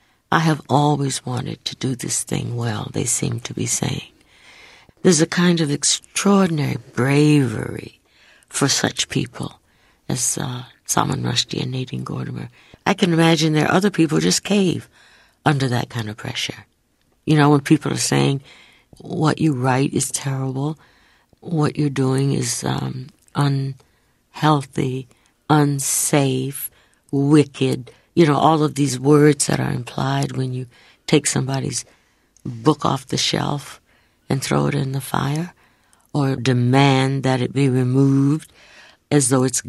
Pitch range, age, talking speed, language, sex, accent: 130-160 Hz, 60-79, 145 wpm, English, female, American